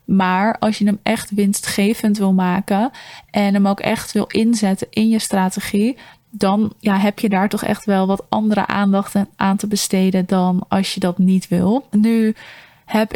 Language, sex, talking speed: Dutch, female, 175 wpm